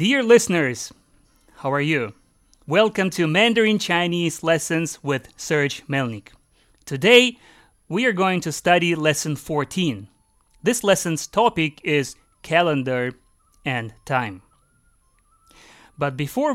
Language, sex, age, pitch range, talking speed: English, male, 30-49, 140-195 Hz, 110 wpm